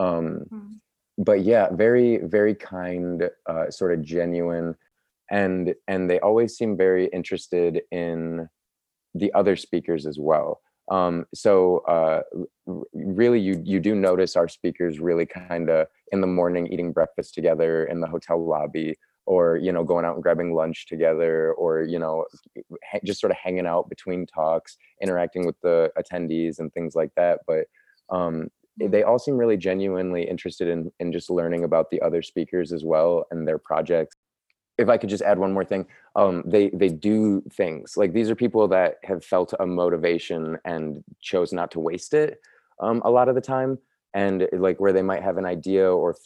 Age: 20-39